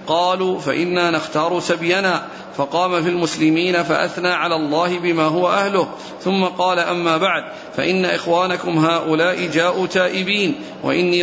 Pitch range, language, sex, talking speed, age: 170-185 Hz, Arabic, male, 125 wpm, 40-59